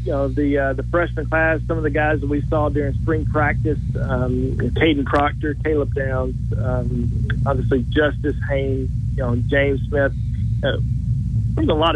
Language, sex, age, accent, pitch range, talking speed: English, male, 40-59, American, 115-140 Hz, 165 wpm